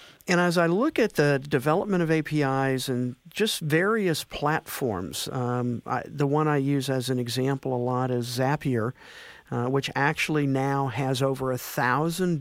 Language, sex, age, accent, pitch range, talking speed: English, male, 50-69, American, 130-165 Hz, 160 wpm